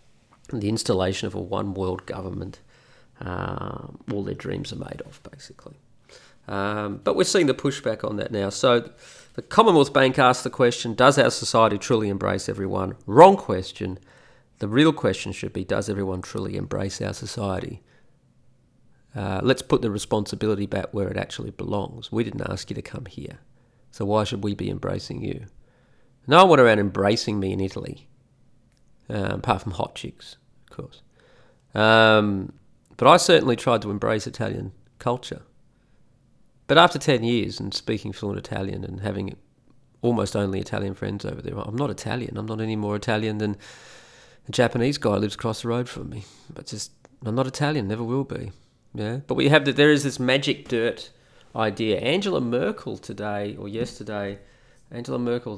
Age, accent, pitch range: 40-59, Australian, 100-125 Hz